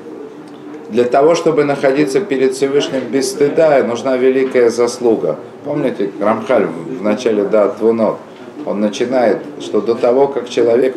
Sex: male